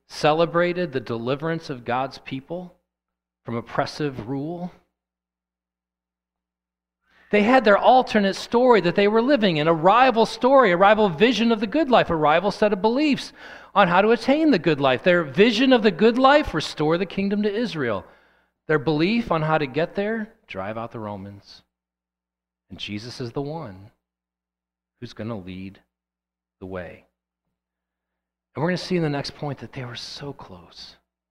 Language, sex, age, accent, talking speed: English, male, 40-59, American, 170 wpm